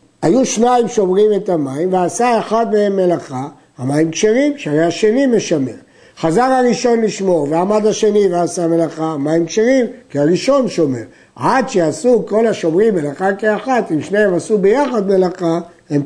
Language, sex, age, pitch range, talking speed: Hebrew, male, 60-79, 170-225 Hz, 140 wpm